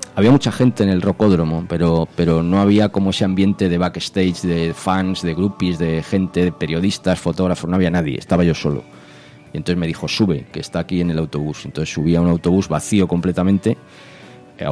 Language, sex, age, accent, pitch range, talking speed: Spanish, male, 30-49, Spanish, 80-95 Hz, 200 wpm